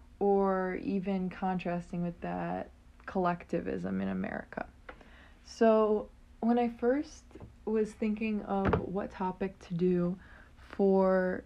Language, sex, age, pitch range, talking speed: English, female, 20-39, 180-210 Hz, 105 wpm